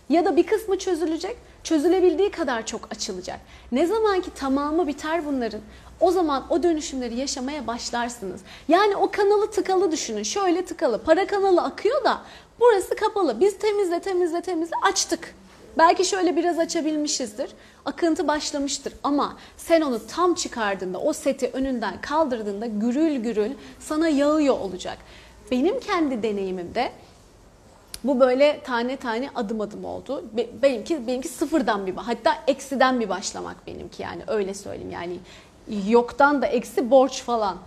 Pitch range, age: 235-335 Hz, 30-49